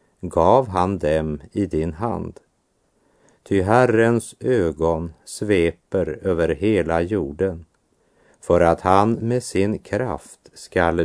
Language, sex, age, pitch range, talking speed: Swedish, male, 50-69, 80-105 Hz, 110 wpm